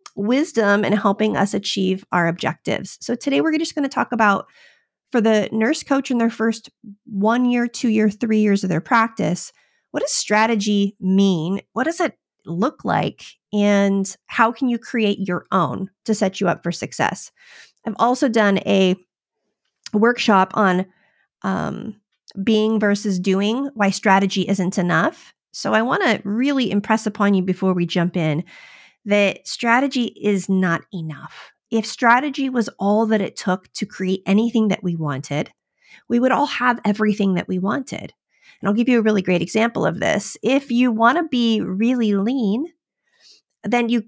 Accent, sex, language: American, female, English